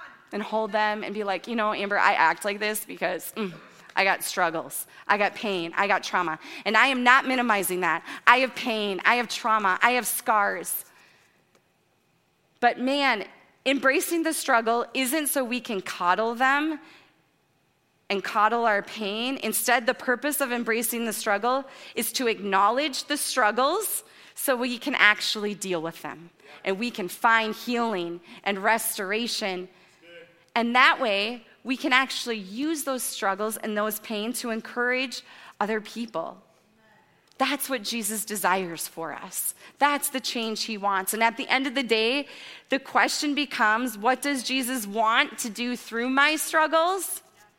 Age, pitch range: 20-39, 205-260 Hz